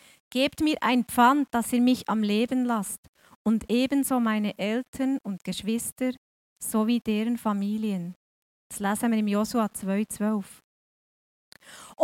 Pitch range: 215-285 Hz